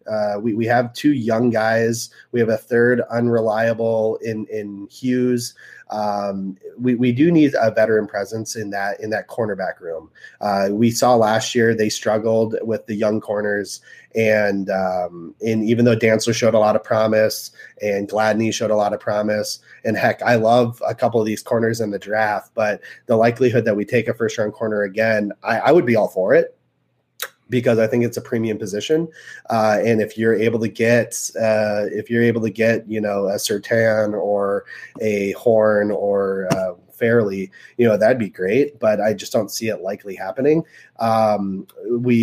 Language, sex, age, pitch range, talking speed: English, male, 30-49, 105-120 Hz, 190 wpm